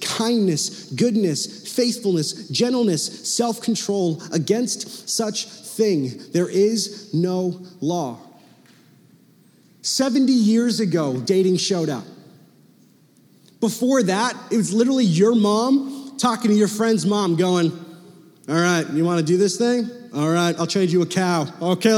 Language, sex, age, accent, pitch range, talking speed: English, male, 30-49, American, 185-235 Hz, 130 wpm